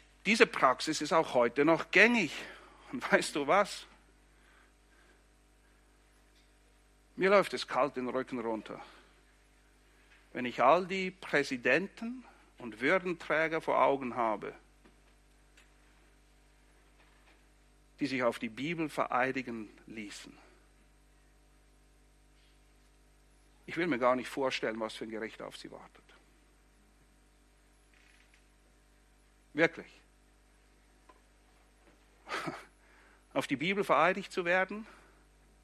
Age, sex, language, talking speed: 60-79, male, English, 95 wpm